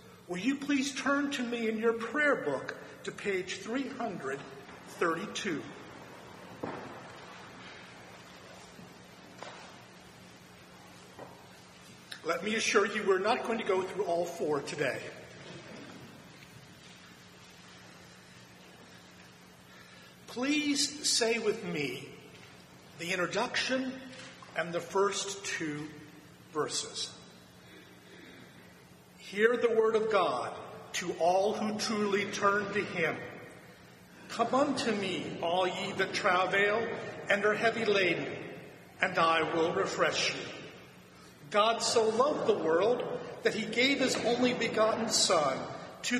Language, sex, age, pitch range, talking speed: English, male, 50-69, 150-230 Hz, 100 wpm